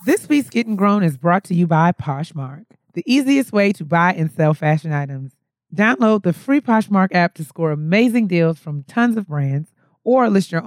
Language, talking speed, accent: English, 195 wpm, American